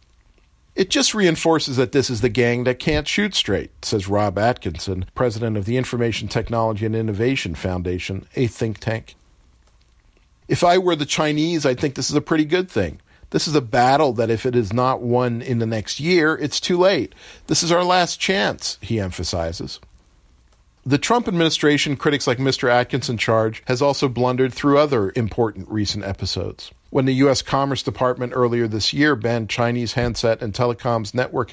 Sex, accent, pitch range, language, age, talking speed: male, American, 105-145 Hz, English, 50-69, 175 wpm